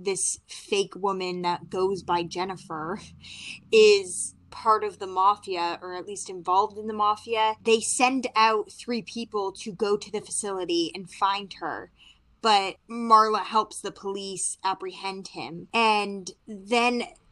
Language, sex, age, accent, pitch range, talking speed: English, female, 20-39, American, 185-220 Hz, 140 wpm